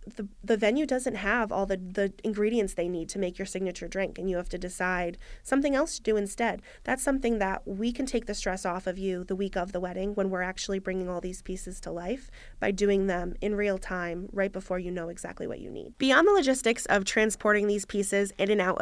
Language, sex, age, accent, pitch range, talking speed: English, female, 20-39, American, 190-225 Hz, 240 wpm